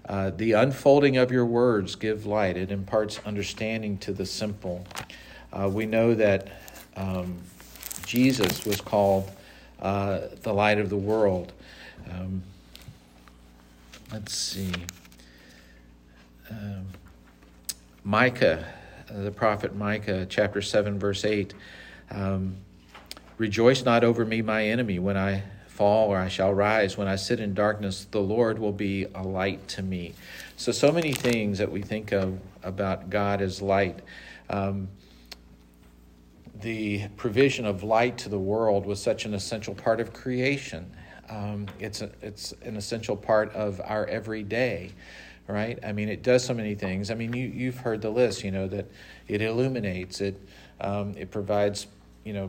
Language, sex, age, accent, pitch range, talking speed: English, male, 50-69, American, 95-110 Hz, 150 wpm